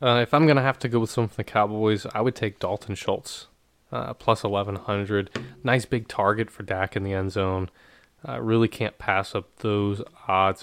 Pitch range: 105-125 Hz